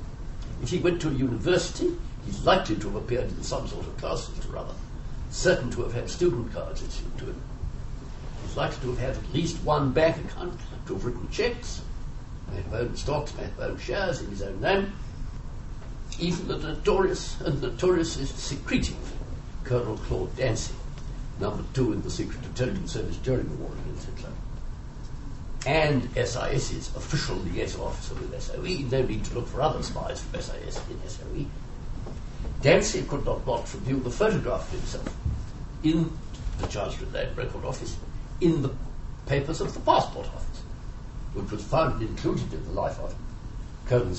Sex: male